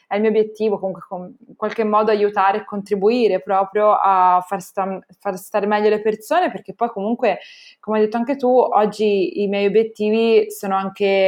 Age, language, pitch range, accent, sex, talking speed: 20-39, Italian, 195-220 Hz, native, female, 175 wpm